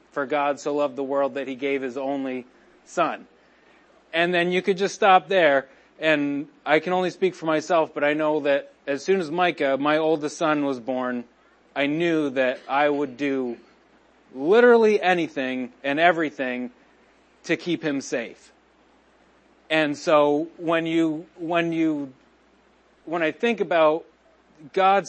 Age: 30-49